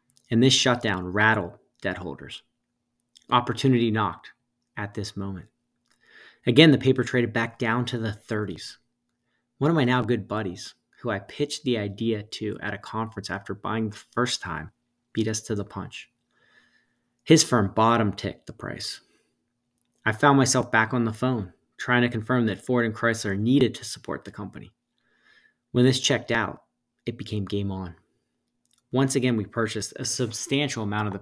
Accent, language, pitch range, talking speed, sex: American, English, 105-125 Hz, 165 wpm, male